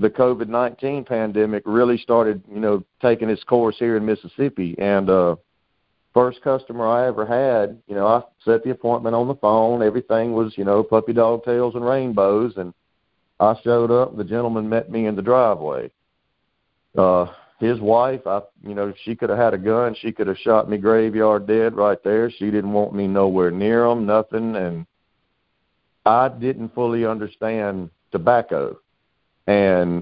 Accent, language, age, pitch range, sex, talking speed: American, English, 50-69, 95-115 Hz, male, 170 wpm